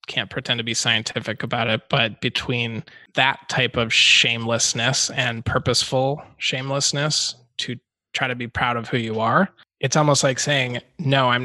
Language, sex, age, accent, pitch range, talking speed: English, male, 20-39, American, 115-135 Hz, 160 wpm